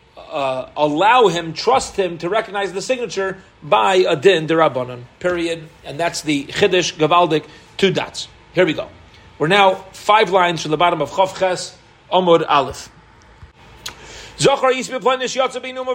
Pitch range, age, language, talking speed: 170-235 Hz, 40-59, English, 130 wpm